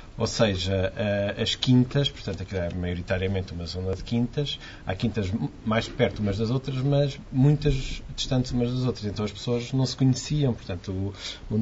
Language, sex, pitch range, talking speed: Portuguese, male, 95-140 Hz, 170 wpm